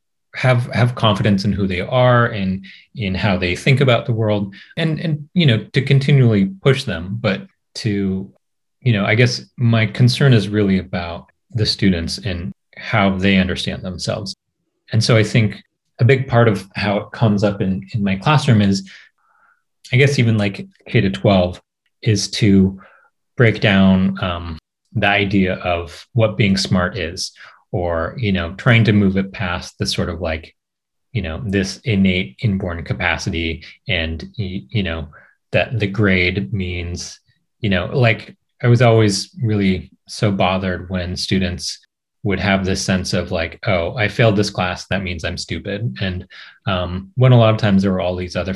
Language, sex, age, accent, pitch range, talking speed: English, male, 30-49, American, 90-110 Hz, 175 wpm